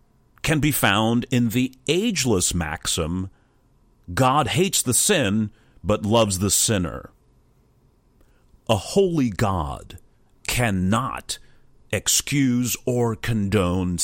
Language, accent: English, American